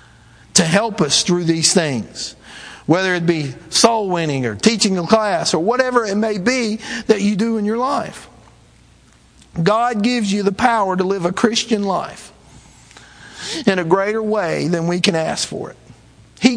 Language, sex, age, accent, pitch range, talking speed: English, male, 50-69, American, 160-215 Hz, 170 wpm